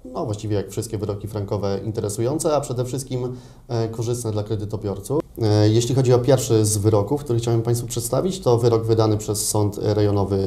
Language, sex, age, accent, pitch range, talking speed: Polish, male, 30-49, native, 105-115 Hz, 165 wpm